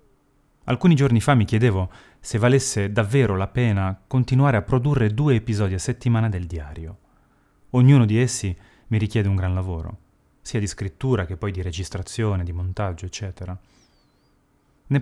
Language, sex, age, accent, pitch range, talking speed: Italian, male, 30-49, native, 90-120 Hz, 150 wpm